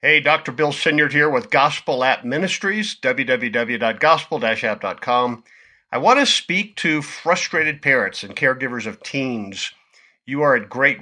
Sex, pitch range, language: male, 120-170 Hz, English